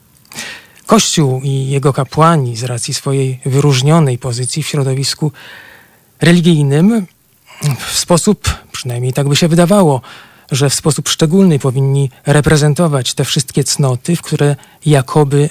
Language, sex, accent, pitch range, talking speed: Polish, male, native, 130-160 Hz, 120 wpm